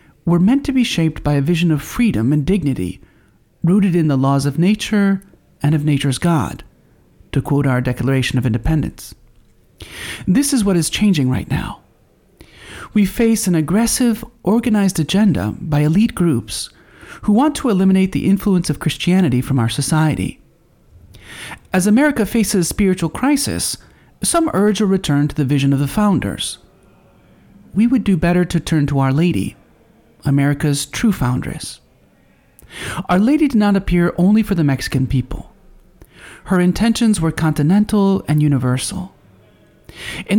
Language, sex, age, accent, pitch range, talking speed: English, male, 40-59, American, 145-210 Hz, 150 wpm